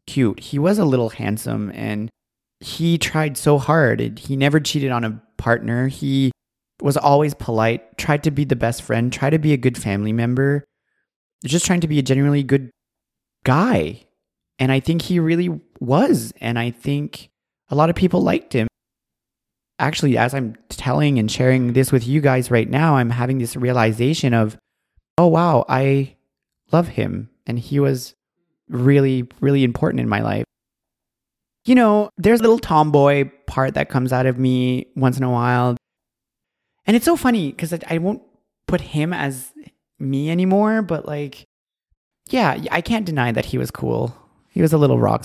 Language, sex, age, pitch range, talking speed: English, male, 30-49, 125-165 Hz, 175 wpm